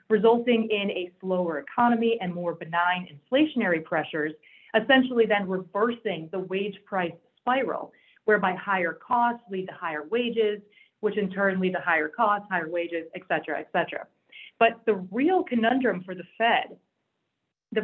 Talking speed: 150 wpm